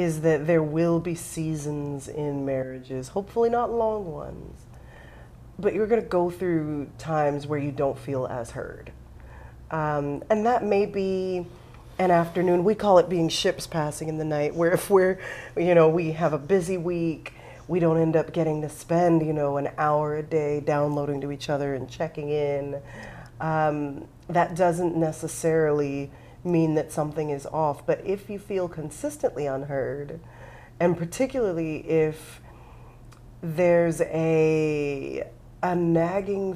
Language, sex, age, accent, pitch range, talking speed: English, female, 30-49, American, 145-175 Hz, 150 wpm